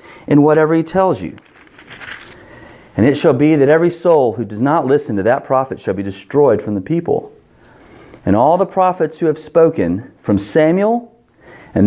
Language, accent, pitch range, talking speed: English, American, 125-175 Hz, 175 wpm